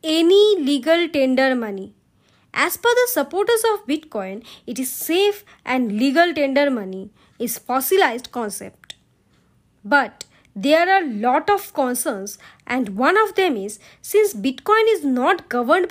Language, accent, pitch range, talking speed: Bengali, native, 250-385 Hz, 140 wpm